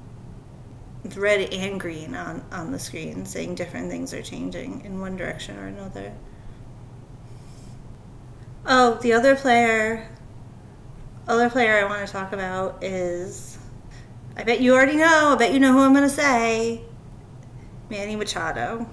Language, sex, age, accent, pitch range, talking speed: English, female, 30-49, American, 135-225 Hz, 140 wpm